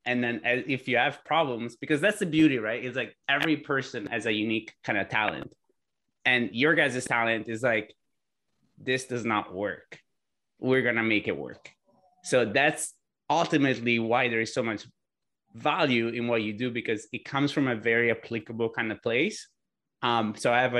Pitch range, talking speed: 110-130 Hz, 185 wpm